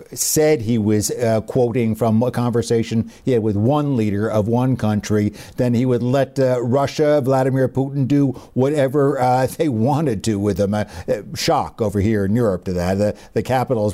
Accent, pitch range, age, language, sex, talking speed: American, 115-150 Hz, 60-79, English, male, 185 wpm